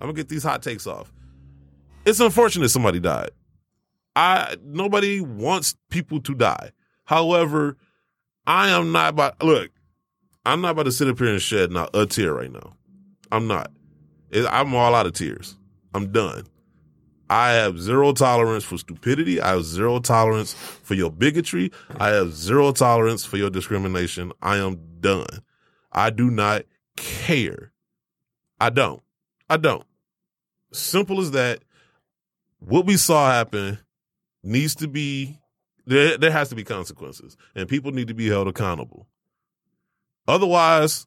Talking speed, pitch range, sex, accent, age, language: 150 wpm, 105-160 Hz, male, American, 20-39, English